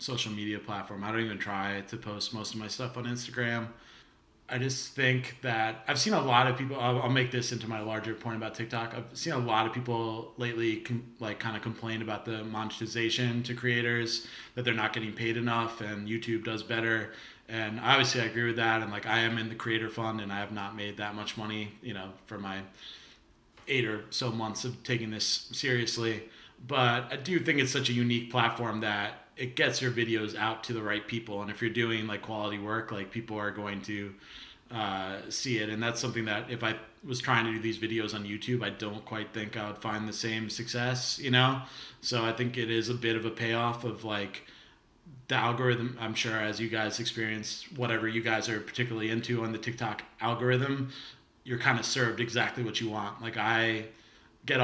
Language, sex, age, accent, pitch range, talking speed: English, male, 30-49, American, 110-120 Hz, 215 wpm